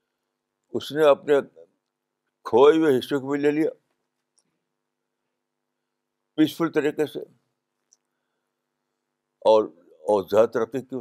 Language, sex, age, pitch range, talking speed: Urdu, male, 60-79, 120-160 Hz, 85 wpm